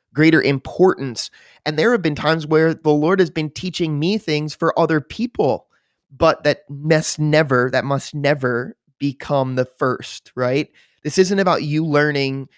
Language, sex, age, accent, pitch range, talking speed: English, male, 20-39, American, 125-150 Hz, 160 wpm